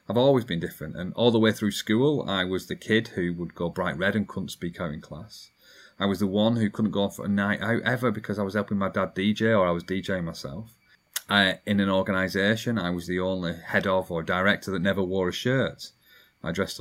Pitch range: 100-120 Hz